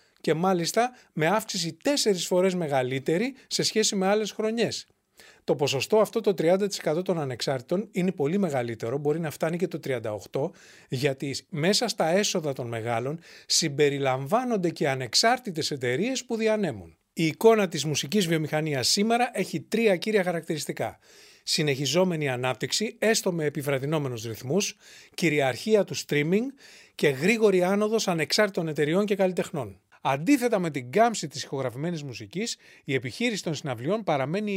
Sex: male